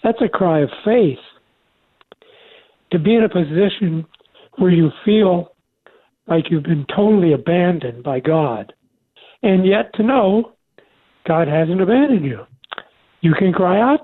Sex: male